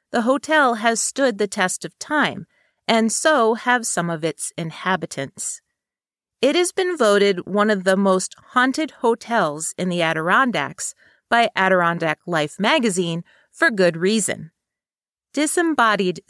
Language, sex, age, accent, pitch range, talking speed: English, female, 40-59, American, 185-260 Hz, 135 wpm